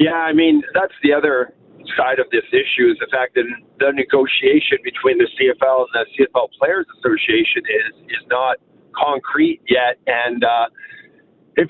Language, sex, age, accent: English, male, 50-69, American